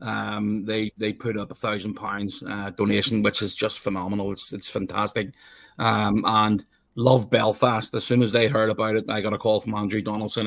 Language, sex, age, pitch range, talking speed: English, male, 30-49, 105-110 Hz, 200 wpm